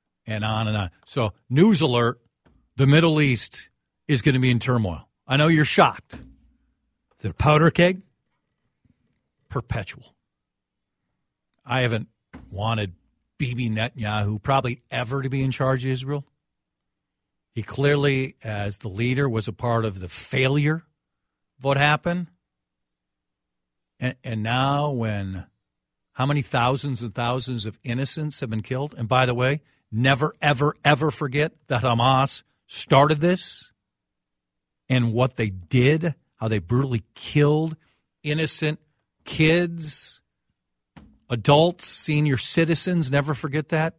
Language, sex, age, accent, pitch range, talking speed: English, male, 50-69, American, 110-150 Hz, 125 wpm